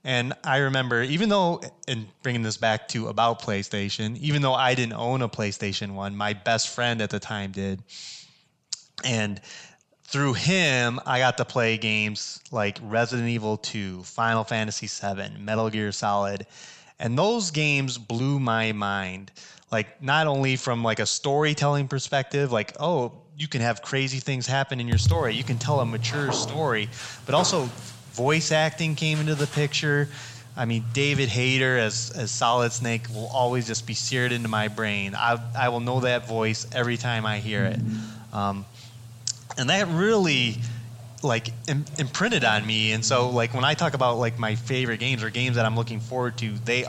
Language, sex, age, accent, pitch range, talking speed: English, male, 20-39, American, 110-130 Hz, 180 wpm